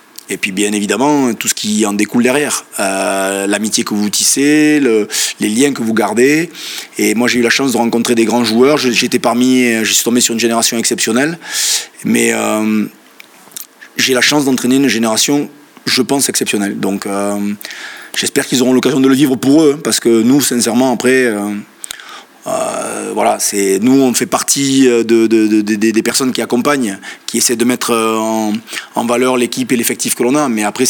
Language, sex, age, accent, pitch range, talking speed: French, male, 20-39, French, 110-130 Hz, 195 wpm